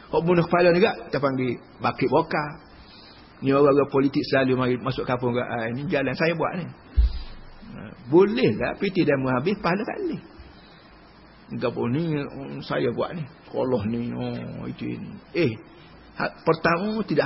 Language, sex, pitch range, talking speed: Malay, male, 130-195 Hz, 140 wpm